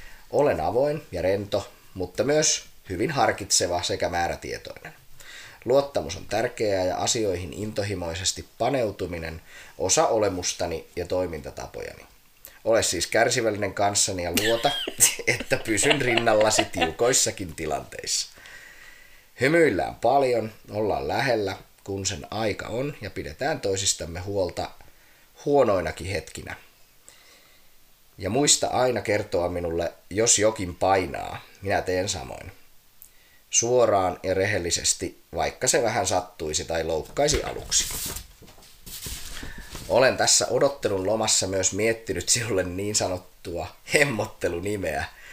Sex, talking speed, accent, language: male, 100 wpm, native, Finnish